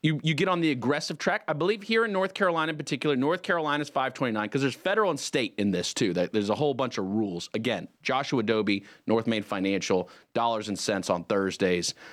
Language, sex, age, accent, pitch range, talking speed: English, male, 30-49, American, 120-190 Hz, 220 wpm